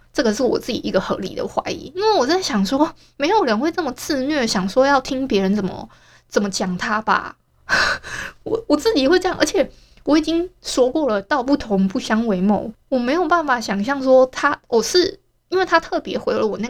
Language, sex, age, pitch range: Chinese, female, 20-39, 210-285 Hz